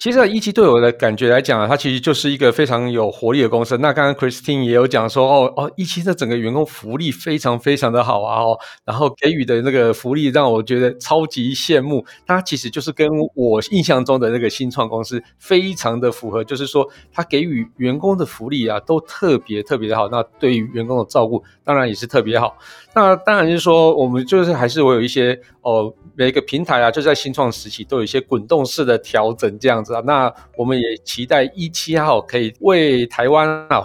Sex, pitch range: male, 120-155 Hz